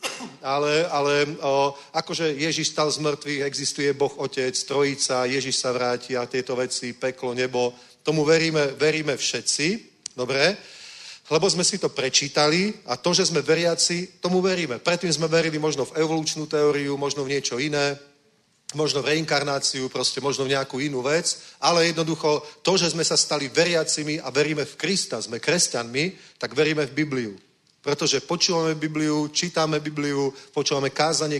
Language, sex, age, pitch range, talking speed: Czech, male, 40-59, 135-165 Hz, 155 wpm